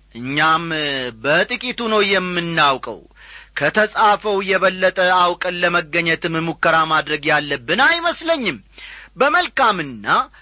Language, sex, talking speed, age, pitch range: Amharic, male, 75 wpm, 30-49, 165-245 Hz